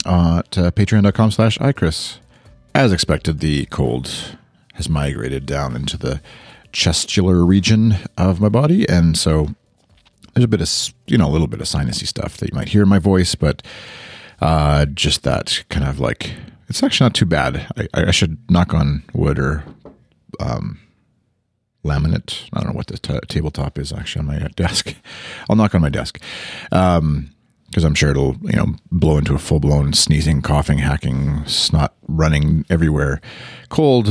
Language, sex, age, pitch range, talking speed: English, male, 40-59, 75-105 Hz, 170 wpm